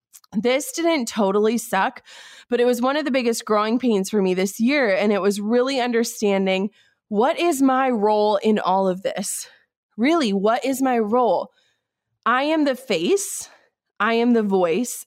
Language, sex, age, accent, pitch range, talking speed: English, female, 20-39, American, 205-265 Hz, 170 wpm